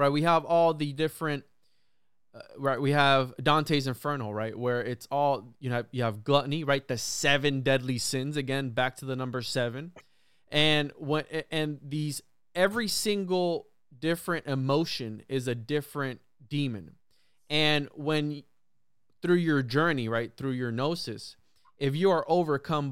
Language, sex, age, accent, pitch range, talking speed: English, male, 20-39, American, 120-145 Hz, 150 wpm